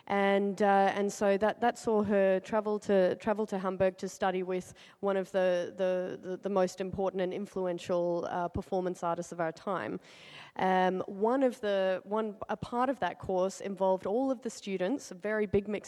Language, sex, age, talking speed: English, female, 30-49, 195 wpm